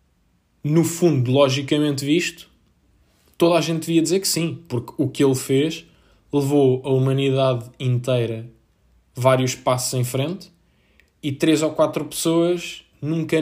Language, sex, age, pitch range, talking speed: Portuguese, male, 20-39, 120-140 Hz, 135 wpm